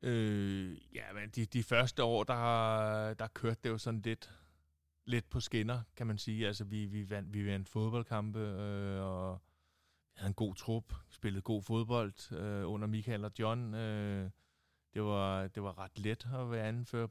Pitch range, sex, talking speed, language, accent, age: 100-115 Hz, male, 180 wpm, Danish, native, 20-39